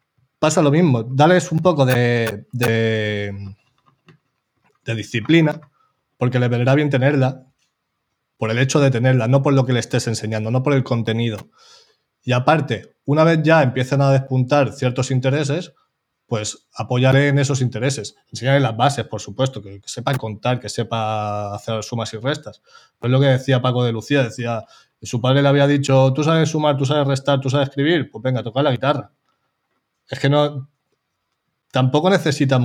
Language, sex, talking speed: Spanish, male, 170 wpm